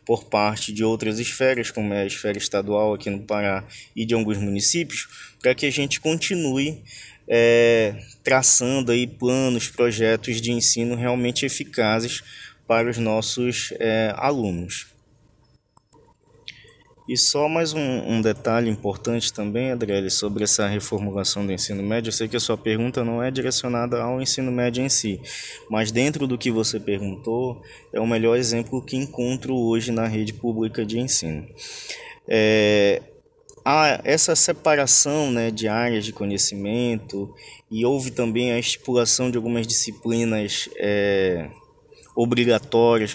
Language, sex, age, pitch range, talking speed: Portuguese, male, 20-39, 110-130 Hz, 135 wpm